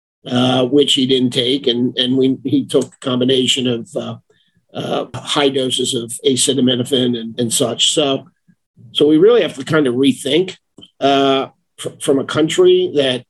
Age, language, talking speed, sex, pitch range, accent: 50-69, English, 165 wpm, male, 125-150 Hz, American